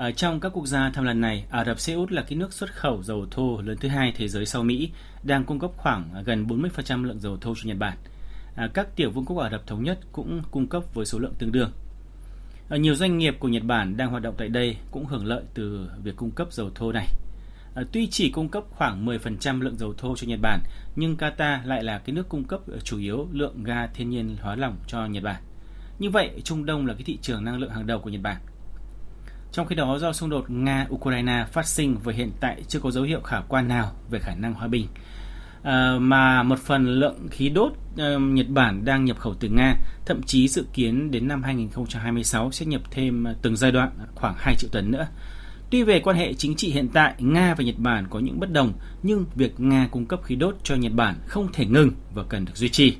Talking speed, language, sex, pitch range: 240 wpm, Vietnamese, male, 110-140 Hz